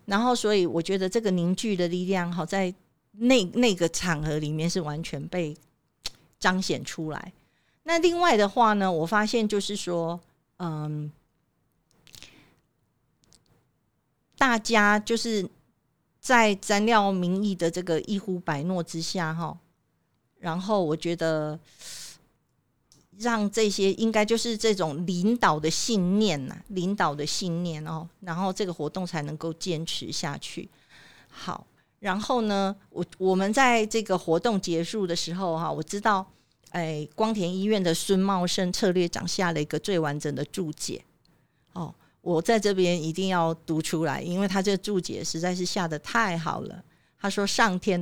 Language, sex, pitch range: Chinese, female, 160-200 Hz